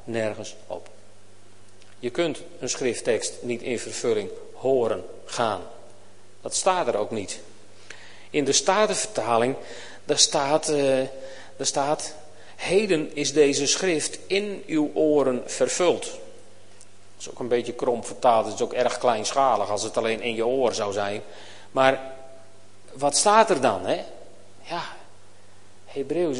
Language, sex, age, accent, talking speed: Dutch, male, 40-59, Dutch, 135 wpm